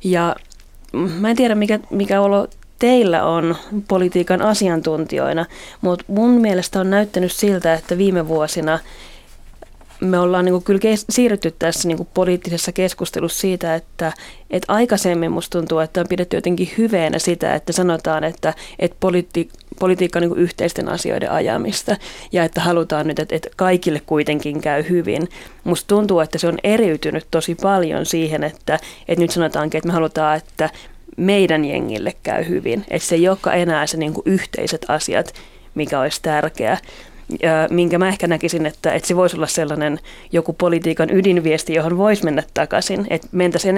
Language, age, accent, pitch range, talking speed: Finnish, 30-49, native, 160-185 Hz, 145 wpm